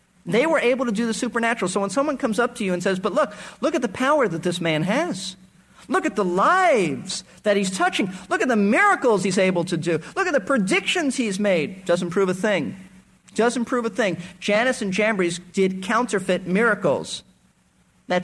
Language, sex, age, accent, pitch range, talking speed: English, male, 50-69, American, 175-230 Hz, 205 wpm